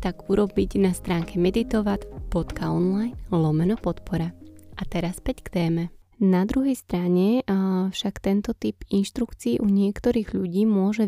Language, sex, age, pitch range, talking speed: Slovak, female, 20-39, 180-205 Hz, 135 wpm